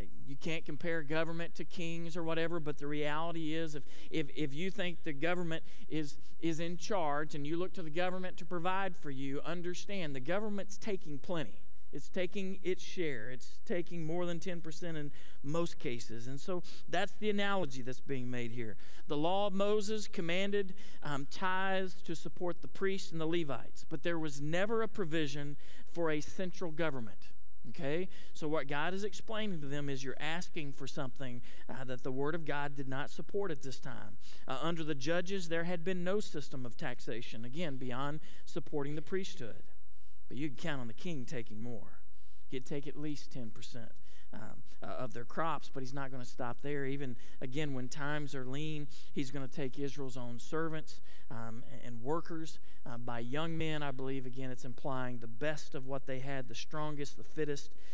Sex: male